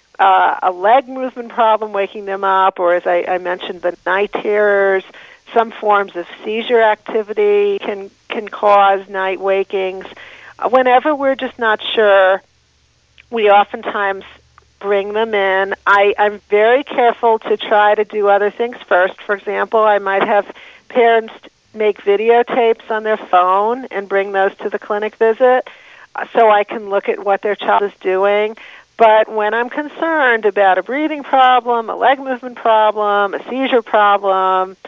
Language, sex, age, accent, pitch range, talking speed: English, female, 50-69, American, 195-225 Hz, 155 wpm